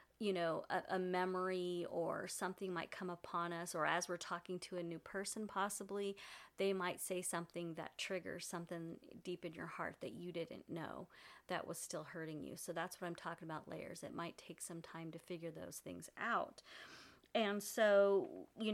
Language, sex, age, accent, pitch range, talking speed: English, female, 30-49, American, 175-195 Hz, 190 wpm